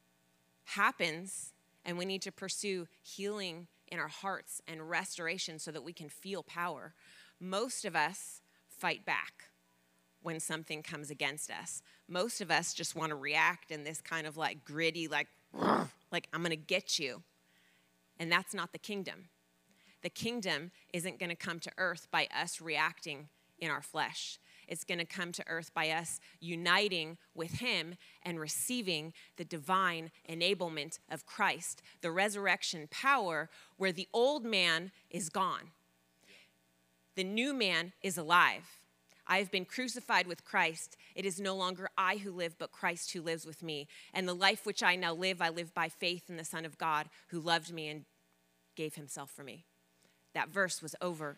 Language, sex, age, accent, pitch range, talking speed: English, female, 30-49, American, 145-185 Hz, 170 wpm